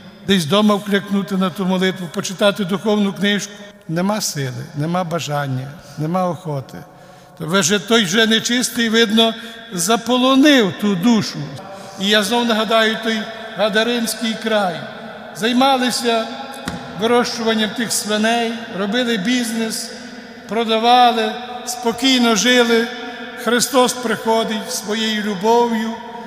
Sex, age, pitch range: male, 60-79, 205-230 Hz